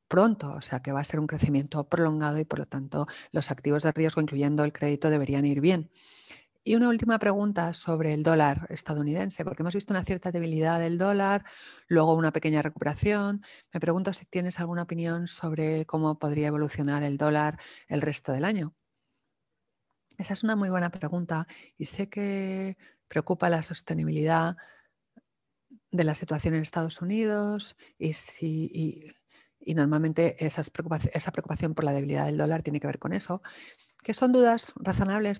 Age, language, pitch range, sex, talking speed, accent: 40-59, English, 150-185 Hz, female, 170 wpm, Spanish